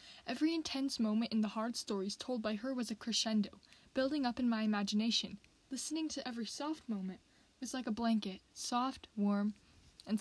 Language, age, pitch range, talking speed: English, 10-29, 200-235 Hz, 175 wpm